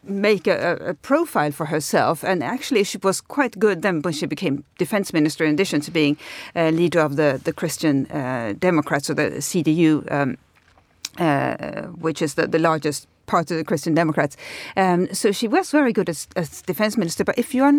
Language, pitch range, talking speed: English, 155-195 Hz, 200 wpm